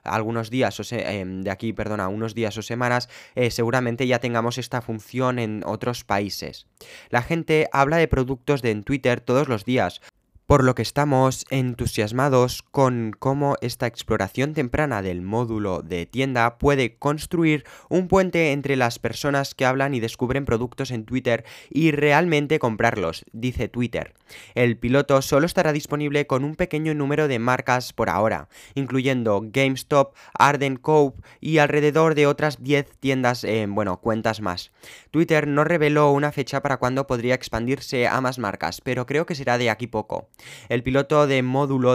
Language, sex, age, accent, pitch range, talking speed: Spanish, male, 20-39, Spanish, 115-145 Hz, 165 wpm